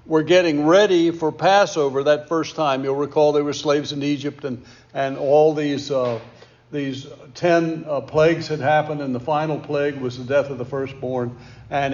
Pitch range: 130-160 Hz